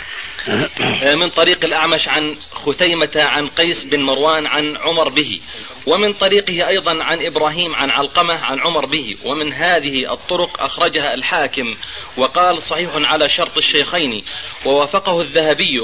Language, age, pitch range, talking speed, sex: Arabic, 30-49, 150-185 Hz, 130 wpm, male